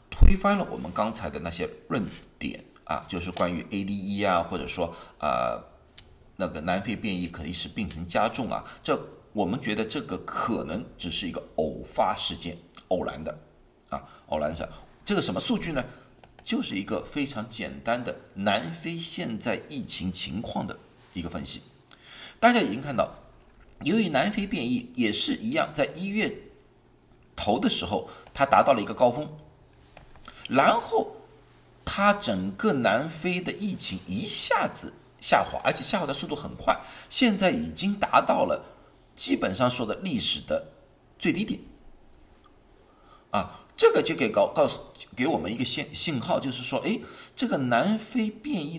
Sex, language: male, Chinese